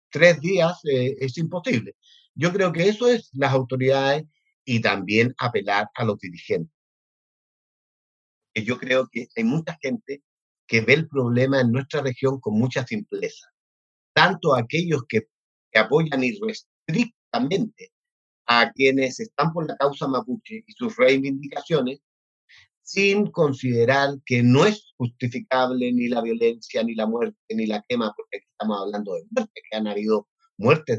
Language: Spanish